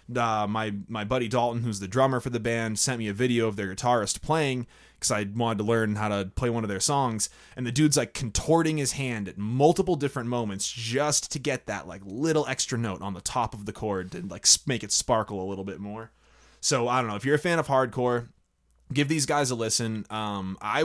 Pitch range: 100-125 Hz